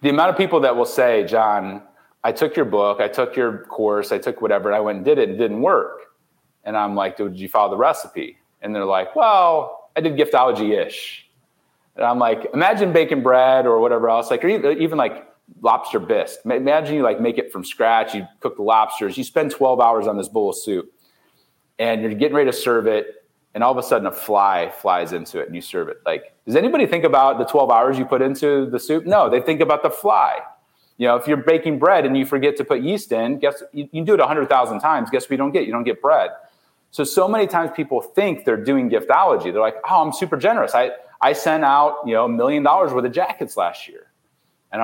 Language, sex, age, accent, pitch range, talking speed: English, male, 30-49, American, 115-170 Hz, 240 wpm